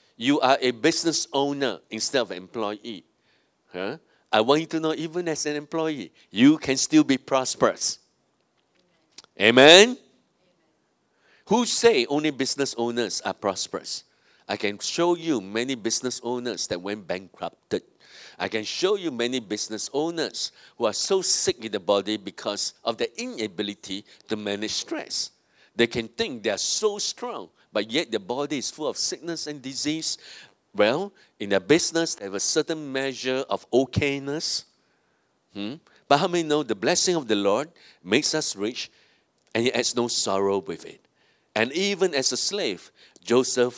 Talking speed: 160 wpm